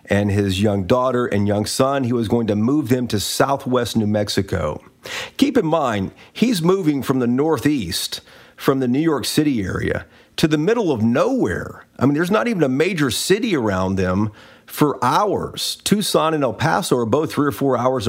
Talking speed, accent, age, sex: 190 wpm, American, 40-59, male